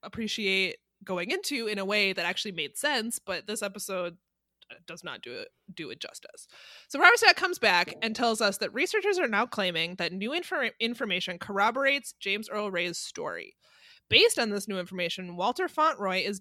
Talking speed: 175 wpm